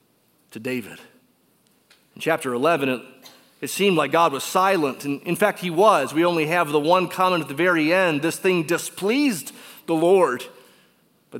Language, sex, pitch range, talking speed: English, male, 130-185 Hz, 175 wpm